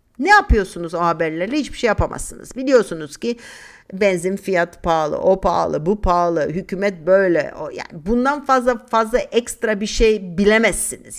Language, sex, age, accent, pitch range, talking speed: Turkish, female, 50-69, native, 175-230 Hz, 145 wpm